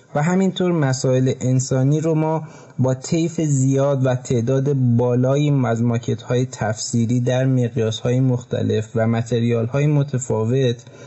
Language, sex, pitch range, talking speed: Persian, male, 120-145 Hz, 115 wpm